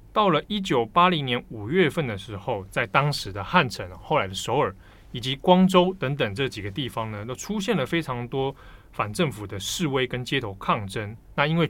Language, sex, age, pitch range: Chinese, male, 20-39, 105-150 Hz